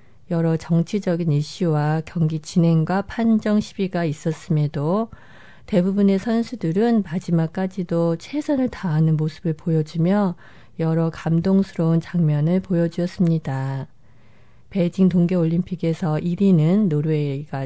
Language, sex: Korean, female